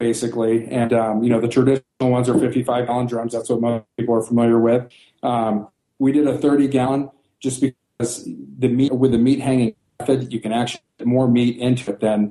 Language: English